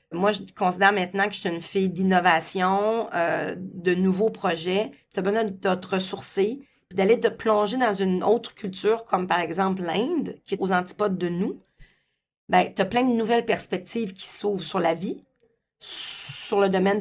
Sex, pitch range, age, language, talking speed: female, 190-220 Hz, 40-59, French, 175 wpm